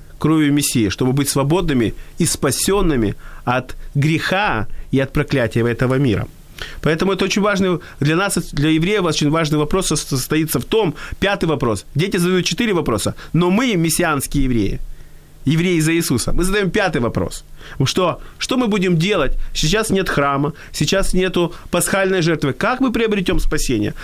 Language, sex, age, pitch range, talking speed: Ukrainian, male, 20-39, 140-185 Hz, 150 wpm